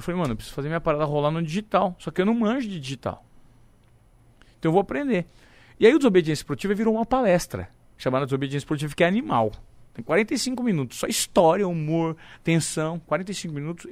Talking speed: 195 wpm